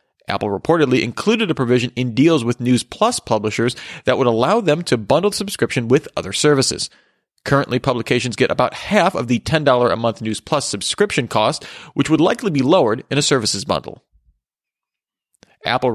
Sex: male